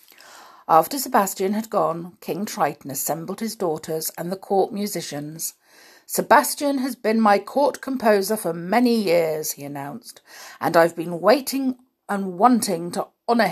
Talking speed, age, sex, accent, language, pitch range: 140 wpm, 50-69, female, British, English, 165-230 Hz